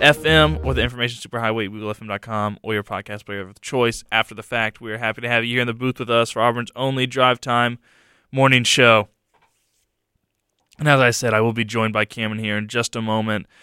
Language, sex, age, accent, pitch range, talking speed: English, male, 20-39, American, 105-120 Hz, 225 wpm